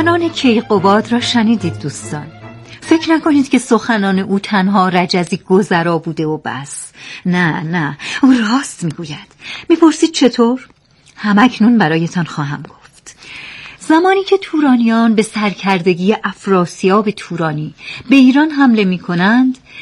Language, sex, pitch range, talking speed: Persian, female, 170-250 Hz, 115 wpm